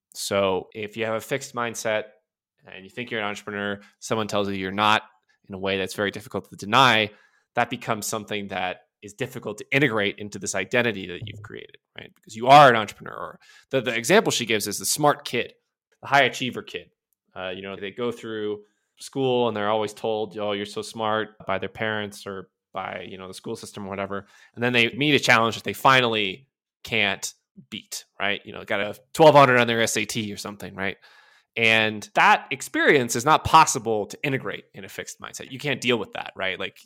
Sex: male